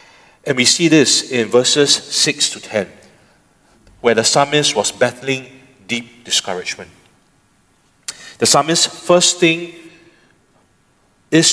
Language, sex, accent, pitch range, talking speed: English, male, Malaysian, 125-170 Hz, 110 wpm